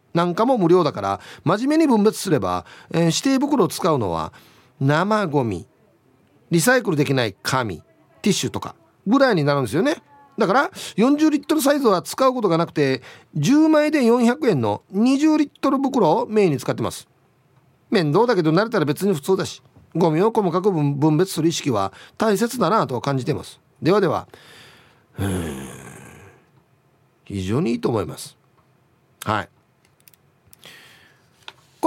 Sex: male